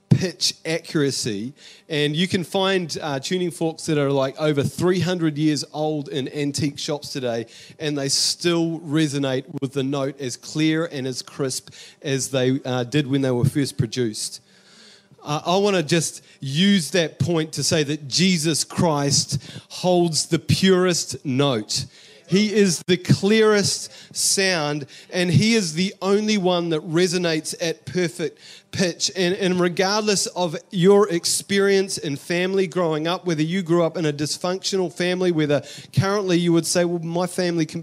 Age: 30-49